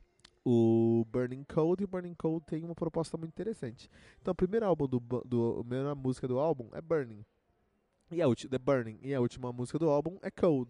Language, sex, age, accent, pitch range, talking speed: Portuguese, male, 20-39, Brazilian, 120-170 Hz, 215 wpm